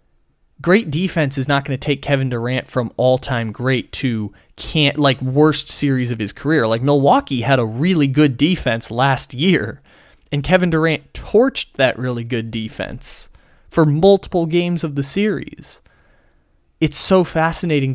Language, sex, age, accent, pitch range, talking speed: English, male, 20-39, American, 125-155 Hz, 155 wpm